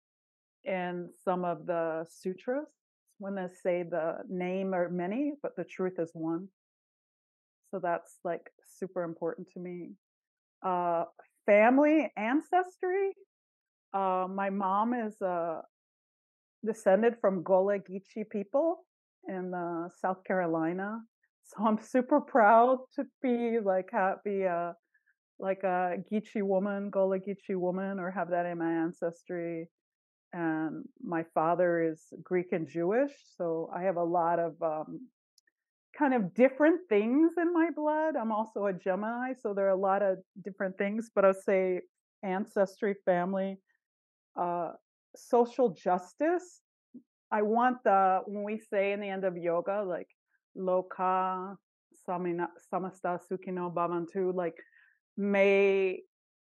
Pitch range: 175-225 Hz